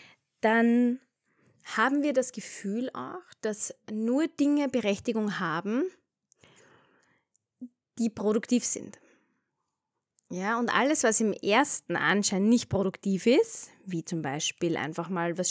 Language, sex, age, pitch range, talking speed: German, female, 20-39, 190-255 Hz, 115 wpm